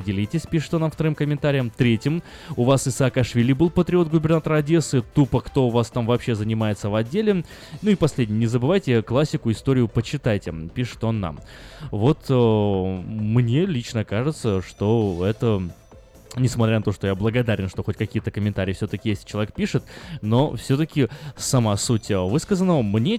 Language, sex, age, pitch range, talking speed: Russian, male, 20-39, 105-140 Hz, 160 wpm